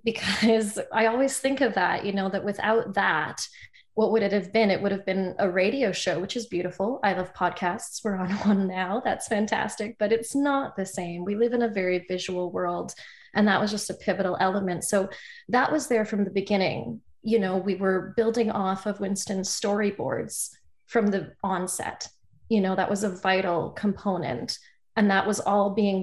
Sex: female